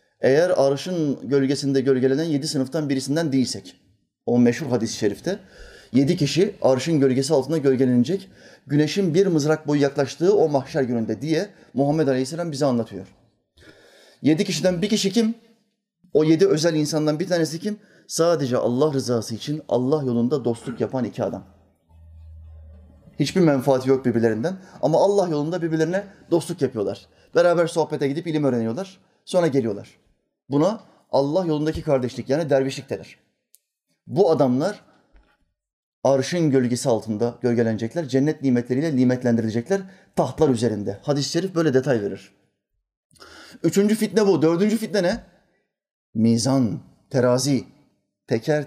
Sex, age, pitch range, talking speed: male, 30-49, 120-165 Hz, 125 wpm